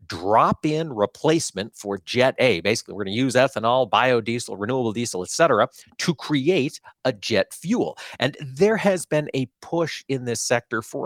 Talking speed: 165 wpm